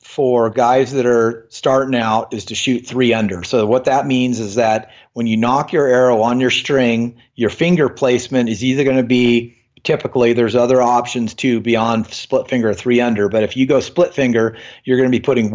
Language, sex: English, male